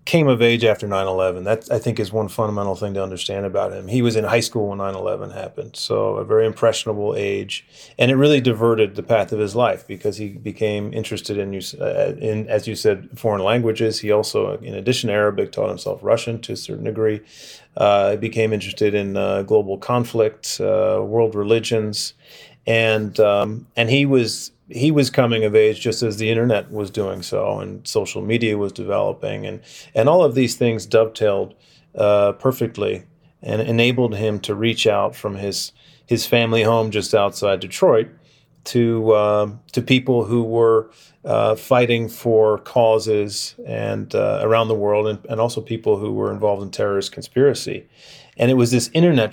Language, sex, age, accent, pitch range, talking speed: English, male, 30-49, American, 105-120 Hz, 180 wpm